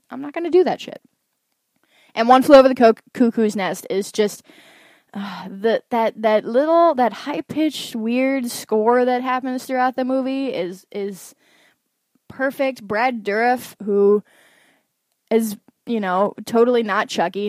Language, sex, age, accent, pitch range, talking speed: English, female, 10-29, American, 200-260 Hz, 150 wpm